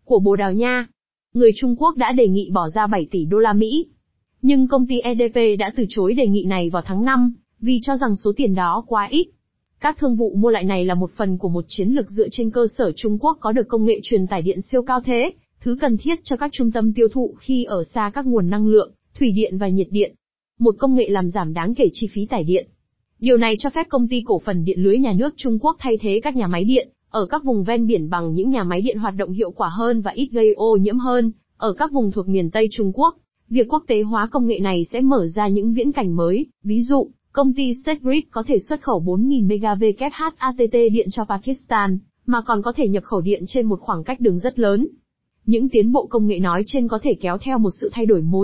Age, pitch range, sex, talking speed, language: 20-39, 205-255 Hz, female, 260 wpm, Vietnamese